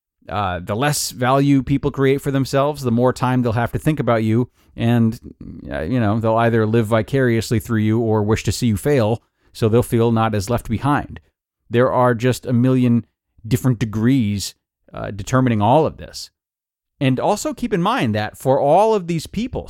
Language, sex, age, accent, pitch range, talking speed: English, male, 30-49, American, 100-135 Hz, 190 wpm